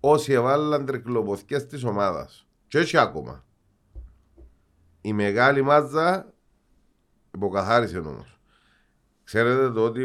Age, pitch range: 50-69, 85-120 Hz